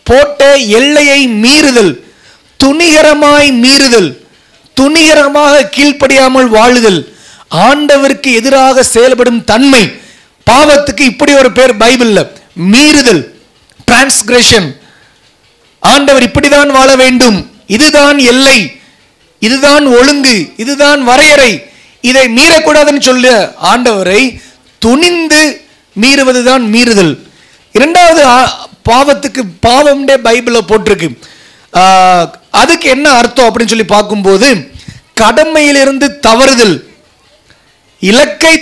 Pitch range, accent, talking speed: 235-285 Hz, native, 65 wpm